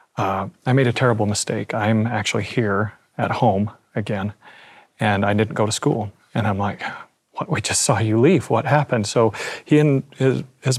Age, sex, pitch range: 30-49, male, 110-130 Hz